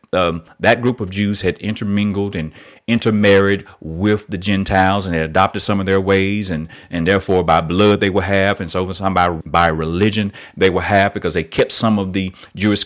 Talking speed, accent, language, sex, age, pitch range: 195 wpm, American, English, male, 40-59, 95-115 Hz